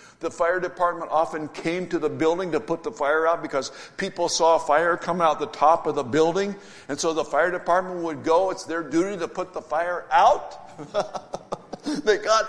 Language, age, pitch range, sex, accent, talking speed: English, 60-79, 155-200 Hz, male, American, 200 wpm